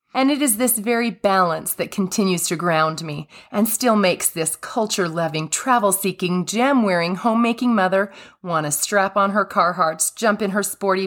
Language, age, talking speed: English, 30-49, 165 wpm